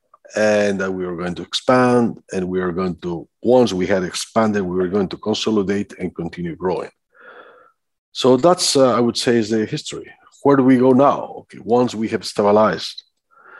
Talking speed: 190 wpm